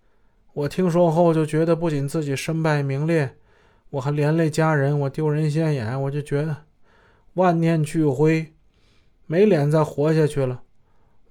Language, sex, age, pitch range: Chinese, male, 20-39, 125-160 Hz